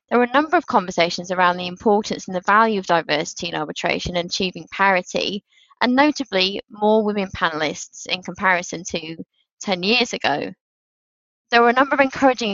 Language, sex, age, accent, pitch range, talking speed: English, female, 20-39, British, 180-225 Hz, 170 wpm